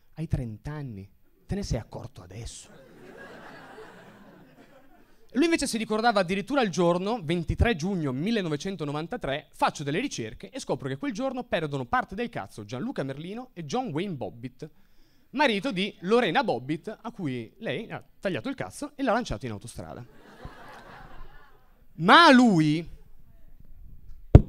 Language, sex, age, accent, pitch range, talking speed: Italian, male, 30-49, native, 145-235 Hz, 130 wpm